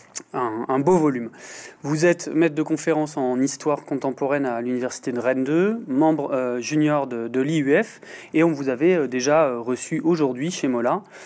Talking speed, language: 170 wpm, French